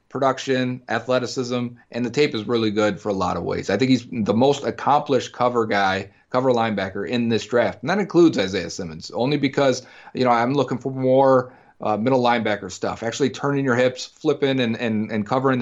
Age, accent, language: 30-49, American, English